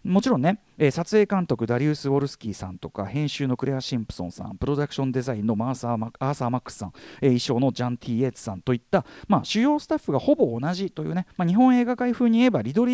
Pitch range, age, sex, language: 120-195 Hz, 40-59, male, Japanese